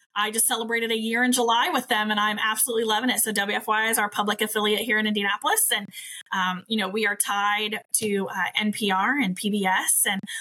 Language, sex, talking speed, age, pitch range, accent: English, female, 210 wpm, 20-39, 195-225 Hz, American